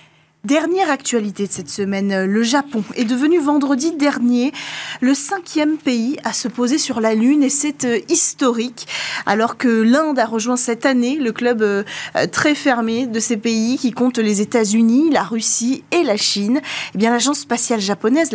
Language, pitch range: French, 225-285 Hz